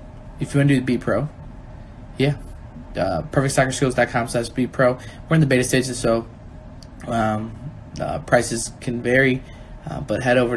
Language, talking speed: English, 150 wpm